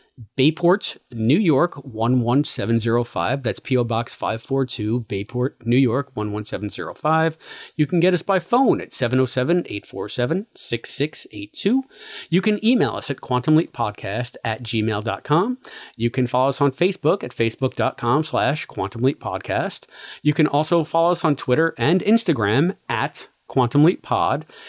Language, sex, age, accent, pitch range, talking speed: English, male, 40-59, American, 125-195 Hz, 120 wpm